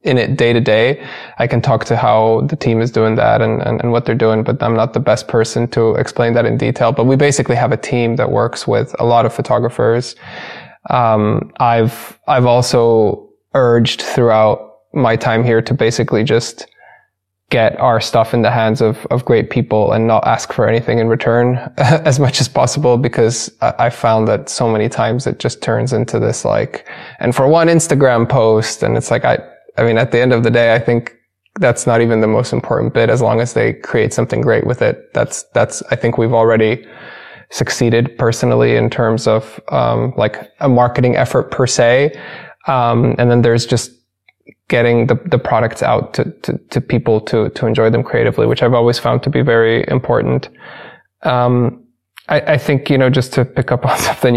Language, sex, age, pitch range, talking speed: English, male, 20-39, 115-125 Hz, 205 wpm